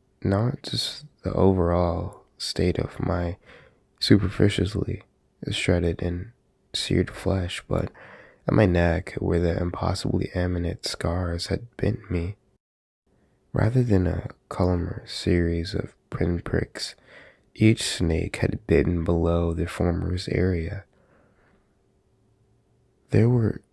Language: English